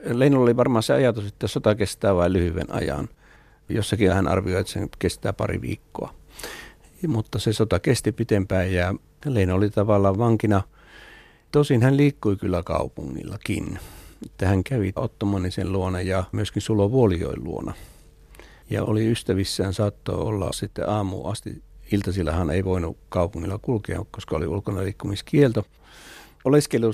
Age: 60-79